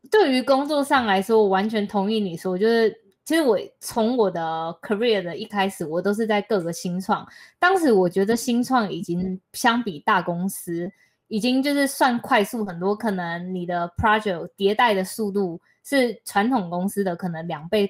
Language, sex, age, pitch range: Chinese, female, 20-39, 190-235 Hz